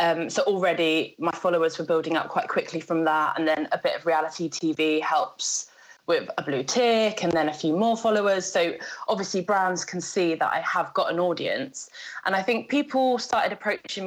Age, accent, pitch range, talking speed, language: 20-39, British, 170-205 Hz, 200 wpm, English